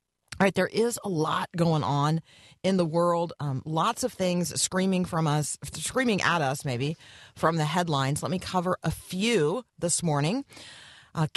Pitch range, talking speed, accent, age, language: 135-170 Hz, 175 wpm, American, 40-59, English